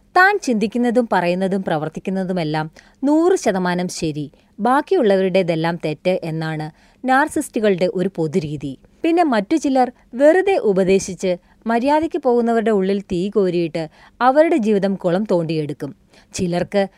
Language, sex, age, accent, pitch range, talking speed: Malayalam, female, 20-39, native, 170-245 Hz, 95 wpm